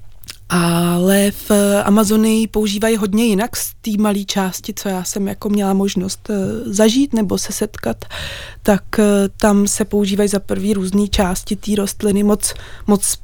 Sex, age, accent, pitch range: female, 20-39, native, 185-210 Hz